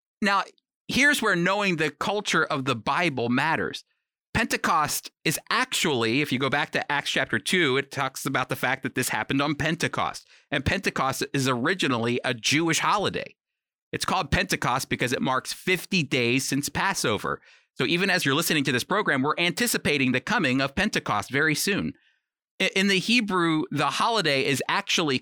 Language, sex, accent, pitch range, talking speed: English, male, American, 130-175 Hz, 170 wpm